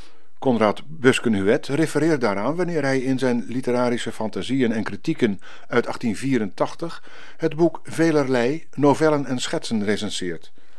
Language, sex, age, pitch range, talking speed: Dutch, male, 50-69, 120-155 Hz, 115 wpm